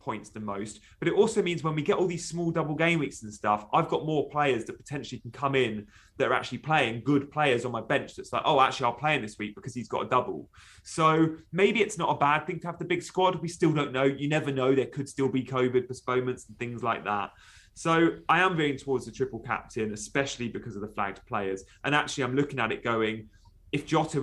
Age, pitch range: 30-49, 110-150 Hz